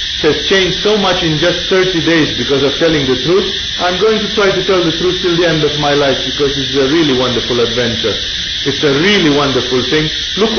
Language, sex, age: English, male, 40-59